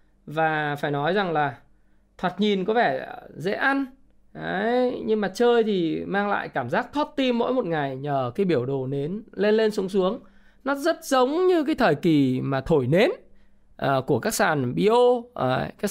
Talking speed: 180 wpm